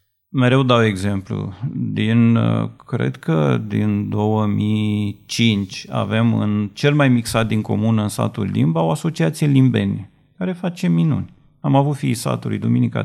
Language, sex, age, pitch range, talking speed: Romanian, male, 40-59, 115-160 Hz, 135 wpm